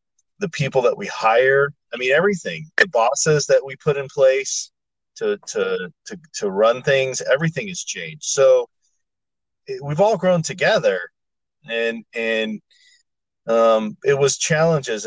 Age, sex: 30-49, male